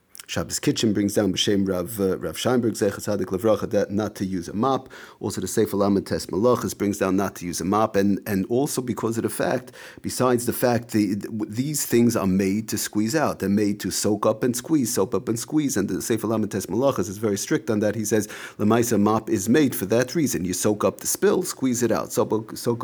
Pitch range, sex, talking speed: 100-120 Hz, male, 230 wpm